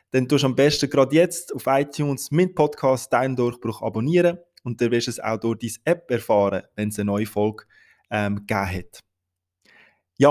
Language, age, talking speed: German, 20-39, 190 wpm